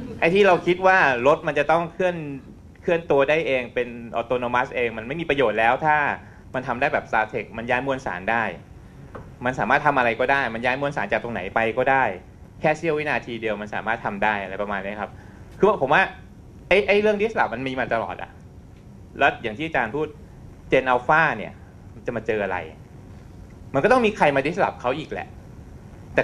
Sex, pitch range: male, 105-155 Hz